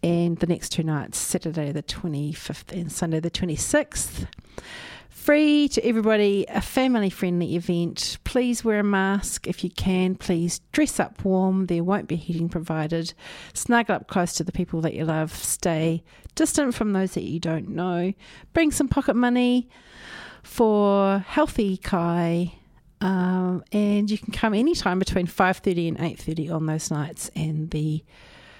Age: 50-69